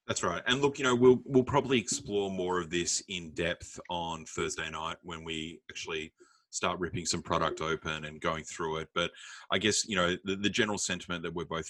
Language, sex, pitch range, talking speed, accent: English, male, 80-105 Hz, 215 wpm, Australian